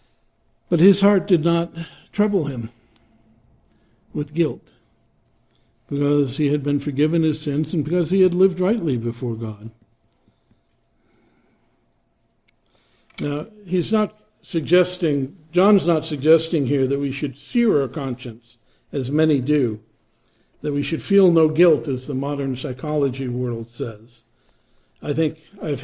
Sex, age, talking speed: male, 60-79, 130 wpm